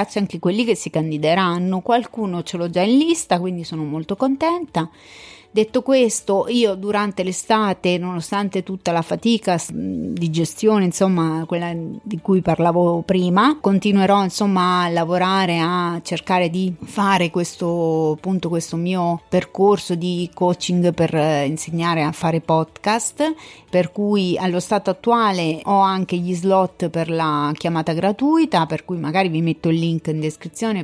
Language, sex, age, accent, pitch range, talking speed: Italian, female, 30-49, native, 170-200 Hz, 145 wpm